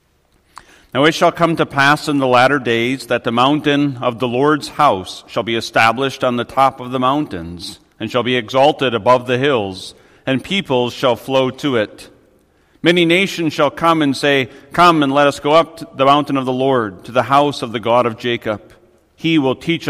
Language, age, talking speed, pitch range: English, 40-59, 205 wpm, 120-145 Hz